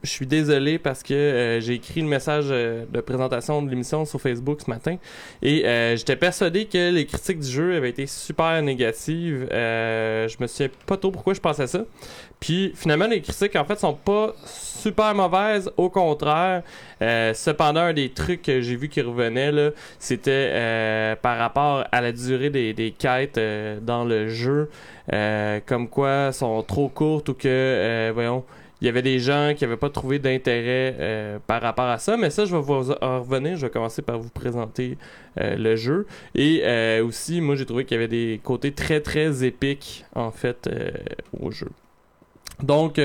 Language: French